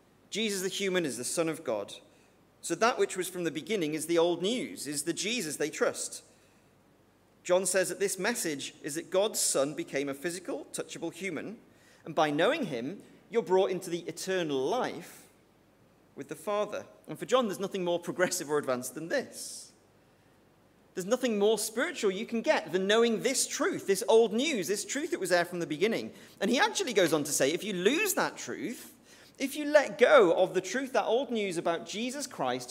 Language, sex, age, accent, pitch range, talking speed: English, male, 40-59, British, 155-215 Hz, 200 wpm